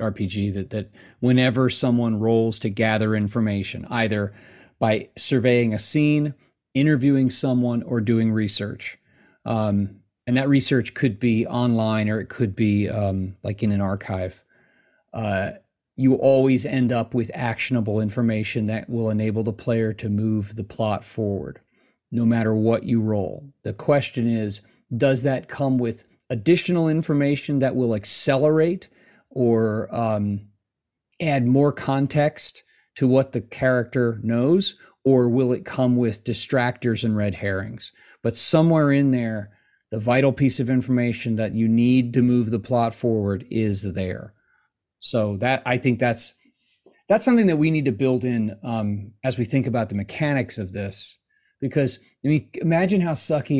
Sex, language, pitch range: male, English, 110-130 Hz